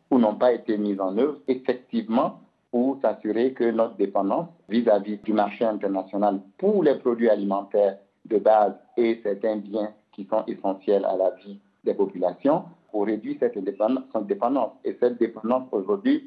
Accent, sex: French, male